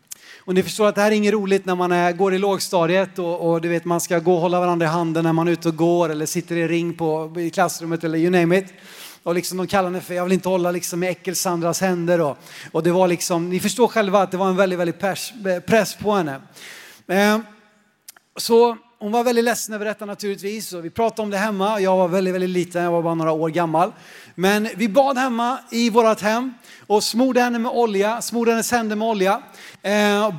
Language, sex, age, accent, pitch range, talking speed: Swedish, male, 30-49, native, 170-210 Hz, 235 wpm